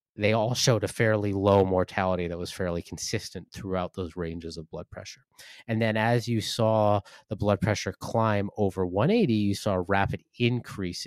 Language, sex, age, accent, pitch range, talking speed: English, male, 30-49, American, 95-120 Hz, 180 wpm